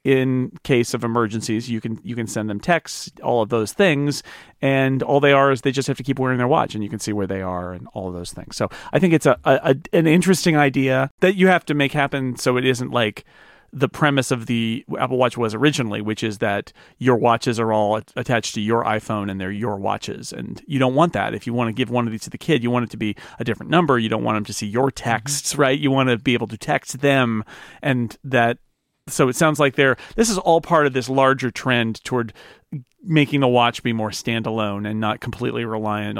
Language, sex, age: English, male, 40-59